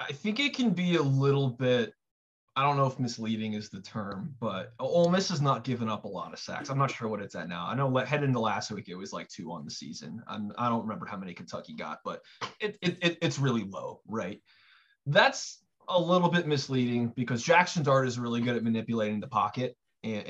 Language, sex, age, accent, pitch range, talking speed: English, male, 20-39, American, 115-145 Hz, 230 wpm